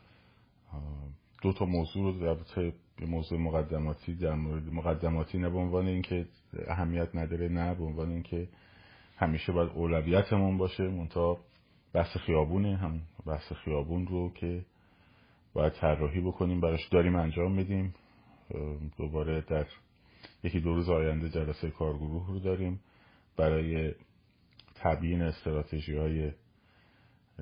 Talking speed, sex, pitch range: 120 wpm, male, 80-95 Hz